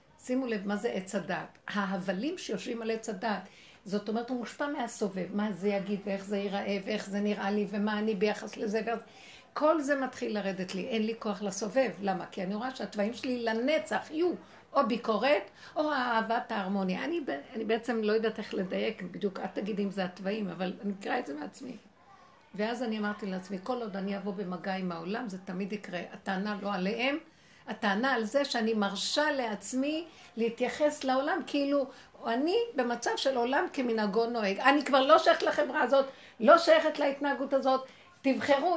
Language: Hebrew